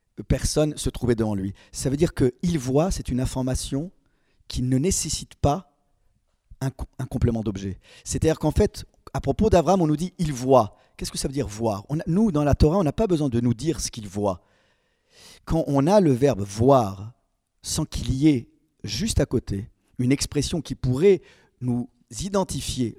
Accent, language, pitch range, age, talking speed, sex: French, French, 115-155 Hz, 50-69, 205 wpm, male